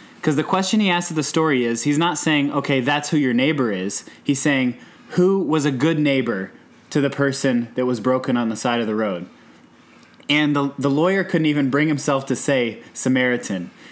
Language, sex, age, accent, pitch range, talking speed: English, male, 20-39, American, 130-160 Hz, 205 wpm